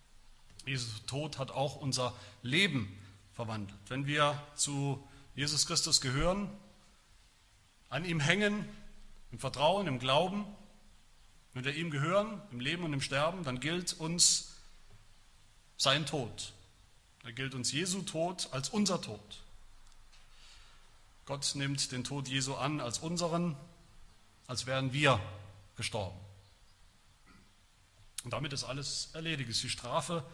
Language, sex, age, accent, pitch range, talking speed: German, male, 40-59, German, 110-170 Hz, 125 wpm